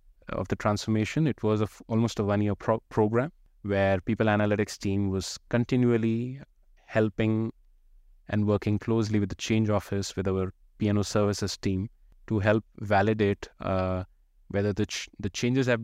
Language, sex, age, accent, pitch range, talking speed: English, male, 20-39, Indian, 95-115 Hz, 150 wpm